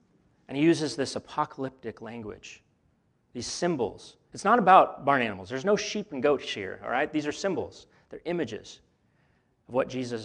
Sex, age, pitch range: male, 30-49, 115-150 Hz